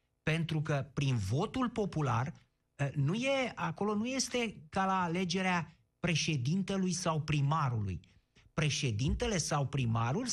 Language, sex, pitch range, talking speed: Romanian, male, 140-205 Hz, 110 wpm